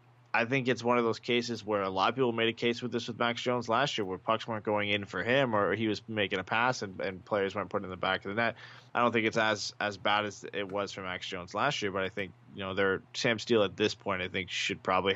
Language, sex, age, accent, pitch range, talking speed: English, male, 20-39, American, 100-120 Hz, 300 wpm